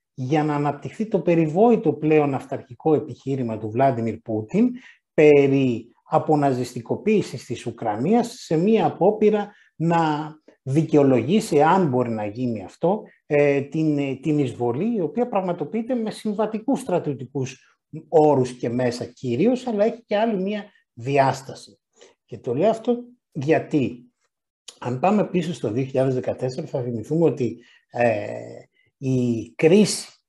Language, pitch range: Greek, 125-185 Hz